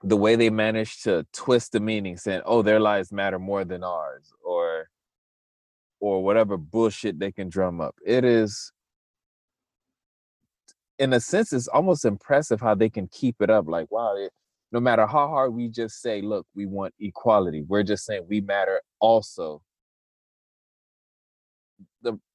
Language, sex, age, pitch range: English, male, 20-39, 100-130 Hz